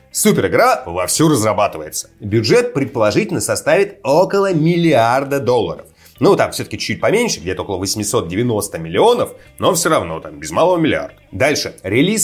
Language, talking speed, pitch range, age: Russian, 135 wpm, 115-175 Hz, 30-49